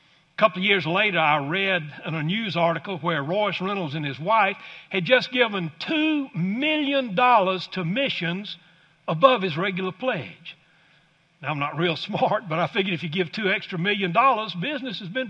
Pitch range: 170-250 Hz